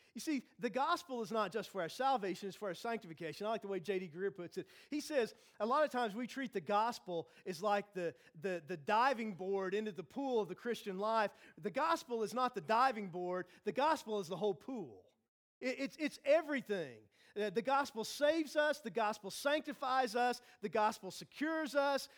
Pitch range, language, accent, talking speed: 205-275 Hz, English, American, 210 wpm